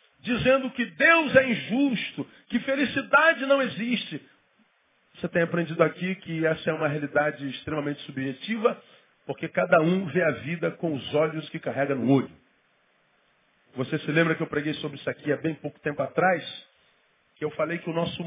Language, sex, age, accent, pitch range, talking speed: Portuguese, male, 40-59, Brazilian, 150-240 Hz, 175 wpm